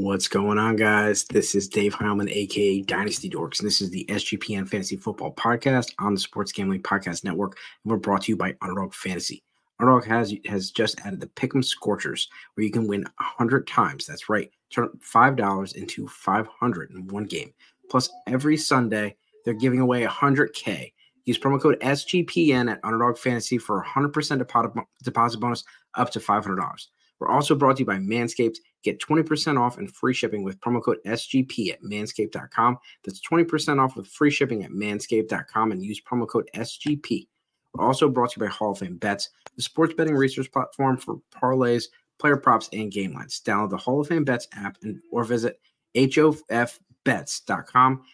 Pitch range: 105-135 Hz